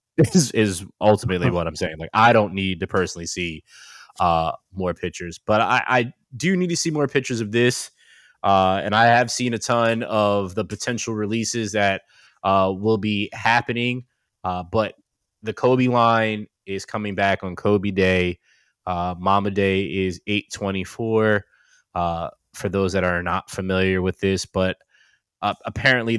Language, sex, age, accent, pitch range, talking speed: Finnish, male, 20-39, American, 95-110 Hz, 165 wpm